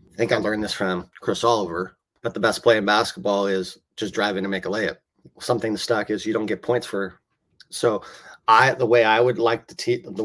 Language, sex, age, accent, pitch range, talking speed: English, male, 30-49, American, 105-115 Hz, 230 wpm